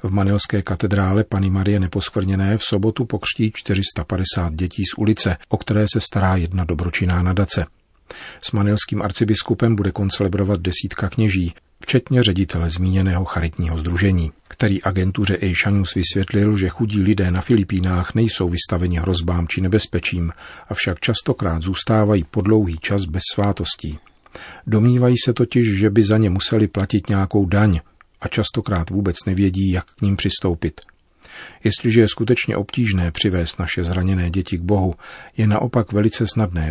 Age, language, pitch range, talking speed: 40-59, Czech, 90-105 Hz, 145 wpm